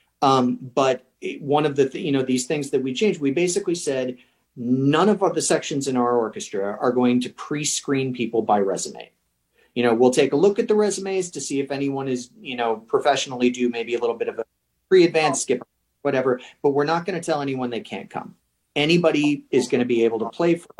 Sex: male